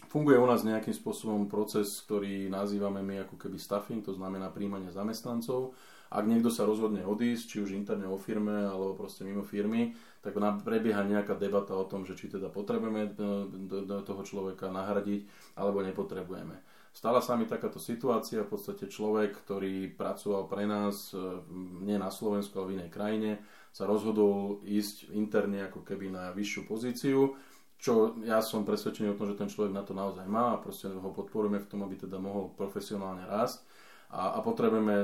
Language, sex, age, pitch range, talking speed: Slovak, male, 30-49, 95-105 Hz, 170 wpm